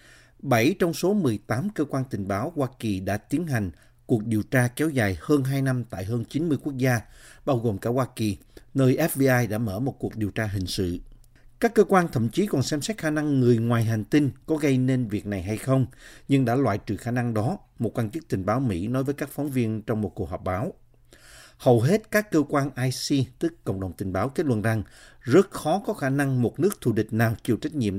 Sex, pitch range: male, 110-145 Hz